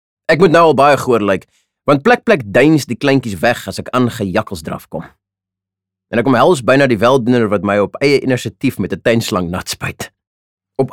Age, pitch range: 30-49, 100-140 Hz